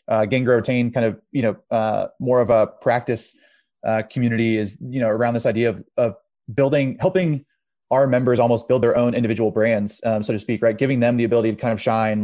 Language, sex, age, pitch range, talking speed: English, male, 20-39, 110-125 Hz, 220 wpm